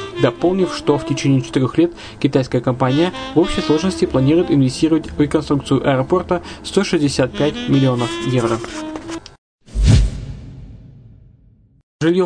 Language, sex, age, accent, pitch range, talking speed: Russian, male, 20-39, native, 130-160 Hz, 100 wpm